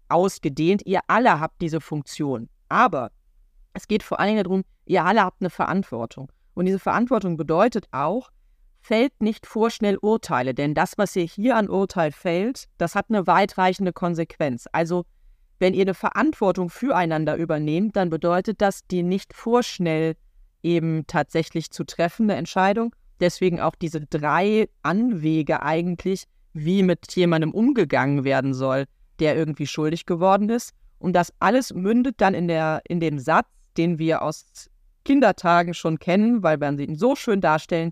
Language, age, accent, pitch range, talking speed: German, 30-49, German, 160-200 Hz, 155 wpm